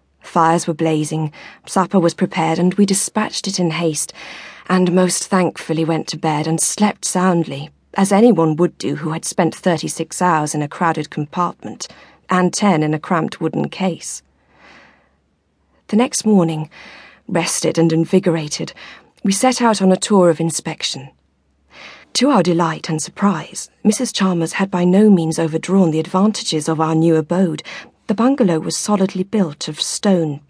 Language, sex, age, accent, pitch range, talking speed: English, female, 40-59, British, 160-200 Hz, 155 wpm